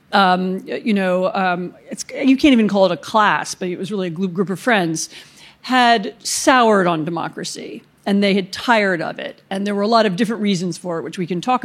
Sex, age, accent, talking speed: female, 40-59, American, 225 wpm